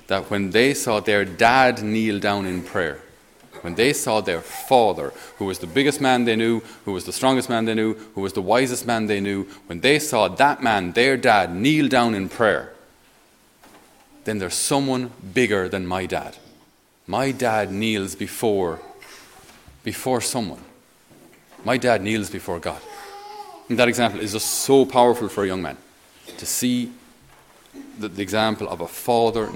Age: 30-49